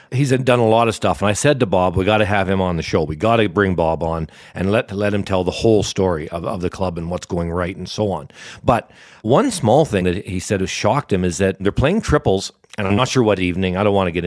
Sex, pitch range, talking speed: male, 95-125 Hz, 295 wpm